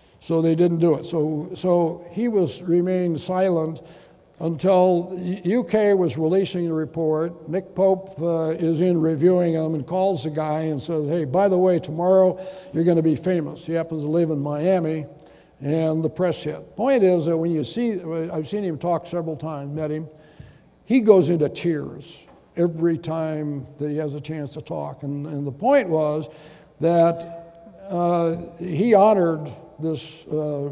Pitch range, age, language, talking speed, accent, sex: 150-180 Hz, 60-79, English, 175 wpm, American, male